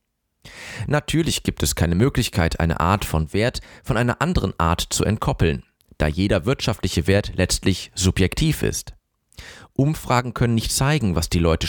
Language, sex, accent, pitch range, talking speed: German, male, German, 90-130 Hz, 150 wpm